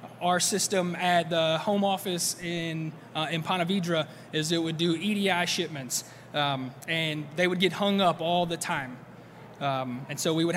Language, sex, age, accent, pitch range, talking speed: English, male, 20-39, American, 160-195 Hz, 180 wpm